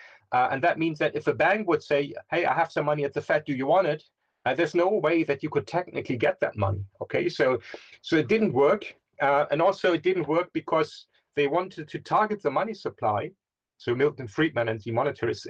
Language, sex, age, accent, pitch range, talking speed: English, male, 40-59, German, 125-165 Hz, 230 wpm